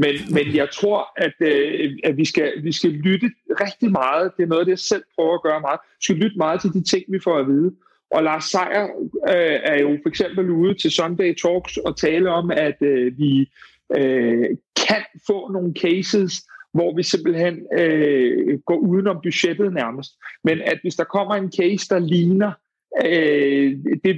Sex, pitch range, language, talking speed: male, 160-195 Hz, Danish, 170 wpm